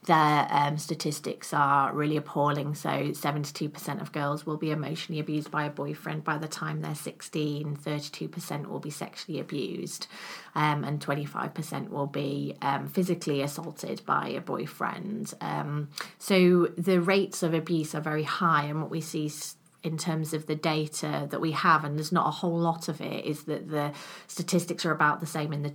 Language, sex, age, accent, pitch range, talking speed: English, female, 30-49, British, 150-170 Hz, 180 wpm